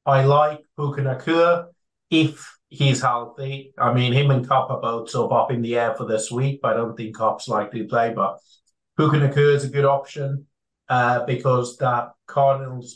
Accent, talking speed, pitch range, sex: British, 185 wpm, 120-140 Hz, male